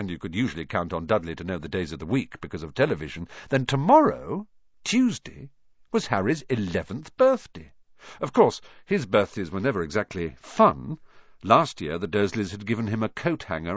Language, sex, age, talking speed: English, male, 50-69, 180 wpm